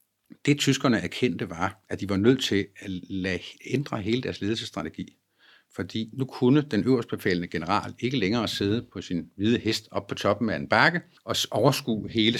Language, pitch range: Danish, 100-135 Hz